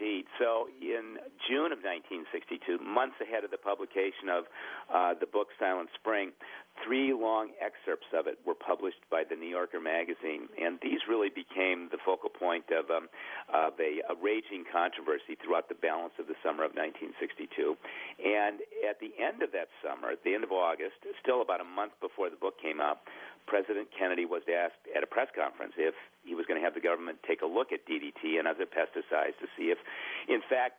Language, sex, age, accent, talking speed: English, male, 50-69, American, 195 wpm